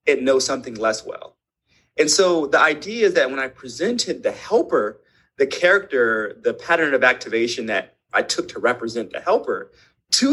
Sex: male